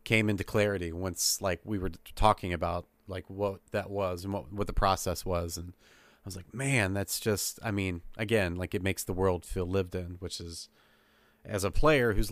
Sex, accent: male, American